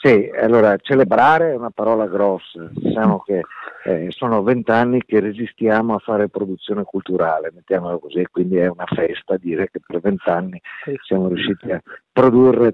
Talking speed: 150 wpm